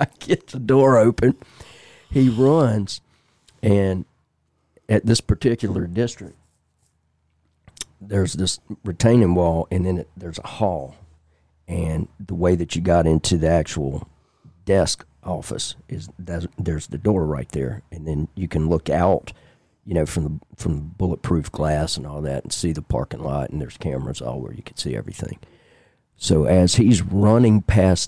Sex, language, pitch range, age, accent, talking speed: male, English, 85-115 Hz, 40-59, American, 160 wpm